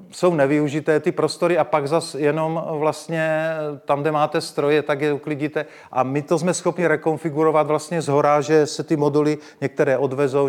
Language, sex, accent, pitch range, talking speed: Czech, male, native, 135-155 Hz, 170 wpm